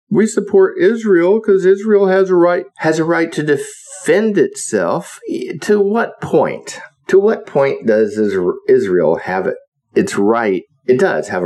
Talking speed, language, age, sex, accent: 150 wpm, English, 50-69, male, American